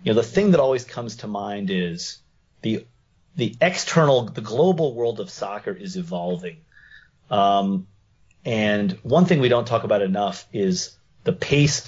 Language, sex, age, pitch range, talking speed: English, male, 30-49, 105-165 Hz, 160 wpm